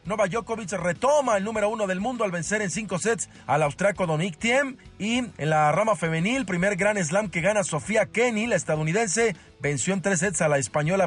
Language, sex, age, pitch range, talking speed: Spanish, male, 40-59, 155-210 Hz, 205 wpm